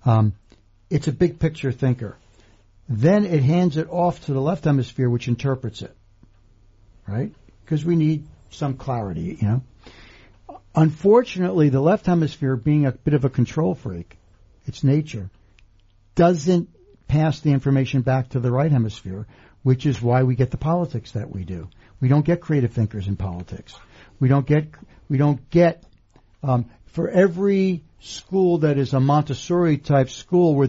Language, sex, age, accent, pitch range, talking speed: English, male, 60-79, American, 115-155 Hz, 160 wpm